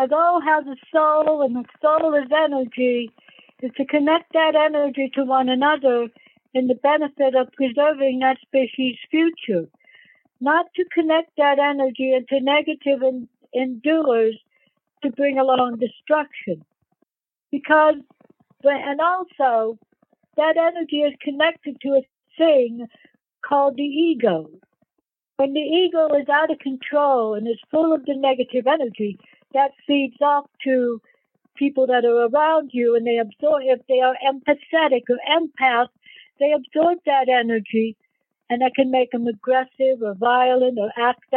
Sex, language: female, English